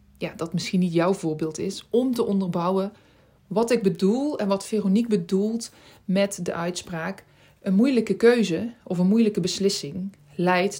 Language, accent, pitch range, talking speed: Dutch, Dutch, 170-215 Hz, 155 wpm